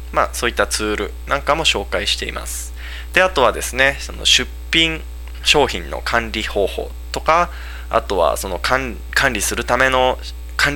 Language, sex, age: Japanese, male, 20-39